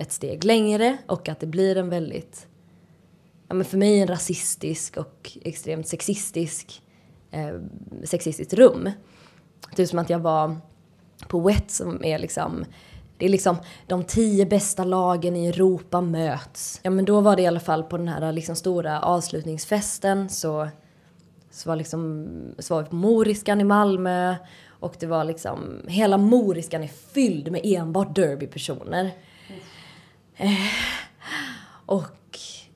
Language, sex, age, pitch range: Swedish, female, 20-39, 165-205 Hz